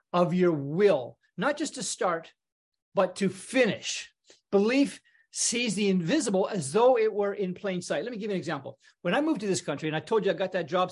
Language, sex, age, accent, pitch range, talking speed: English, male, 40-59, American, 170-210 Hz, 225 wpm